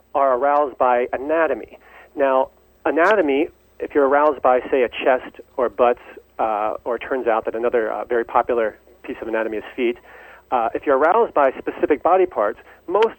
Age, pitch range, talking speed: 40-59, 130-175 Hz, 175 wpm